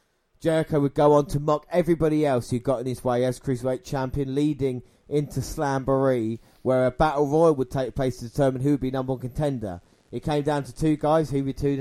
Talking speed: 220 wpm